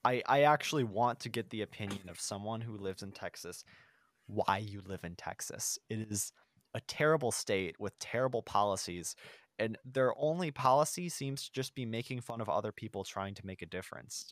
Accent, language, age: American, English, 20-39